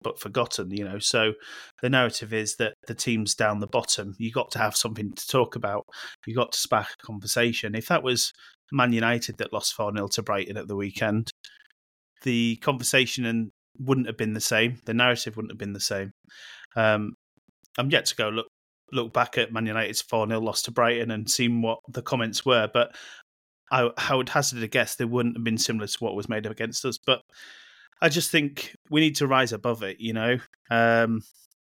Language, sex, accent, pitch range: English, male, British, 110-125 Hz